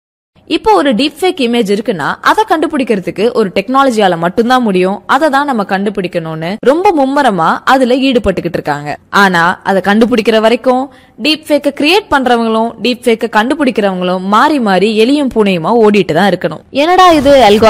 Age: 20-39